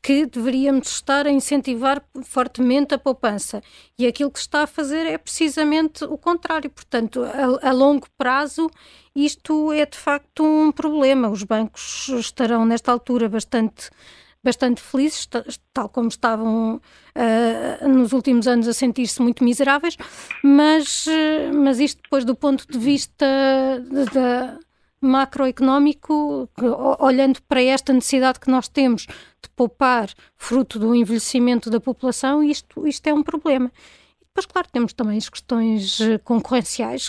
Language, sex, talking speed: Portuguese, female, 140 wpm